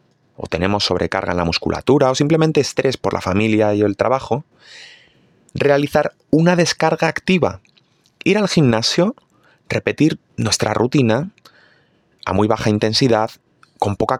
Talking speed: 130 wpm